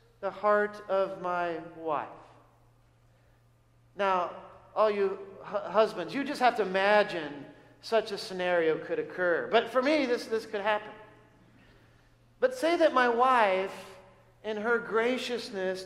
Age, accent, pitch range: 50-69, American, 195-255 Hz